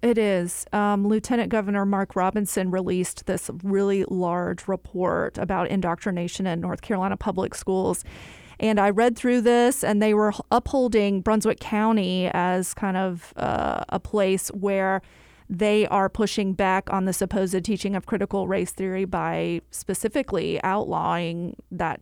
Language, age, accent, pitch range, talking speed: English, 30-49, American, 185-210 Hz, 145 wpm